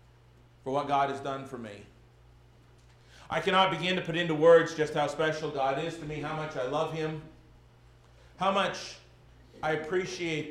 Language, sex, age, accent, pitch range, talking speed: English, male, 40-59, American, 135-175 Hz, 170 wpm